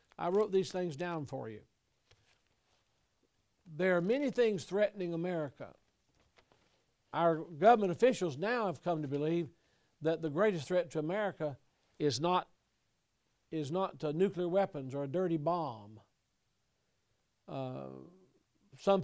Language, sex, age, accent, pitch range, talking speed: English, male, 60-79, American, 150-190 Hz, 120 wpm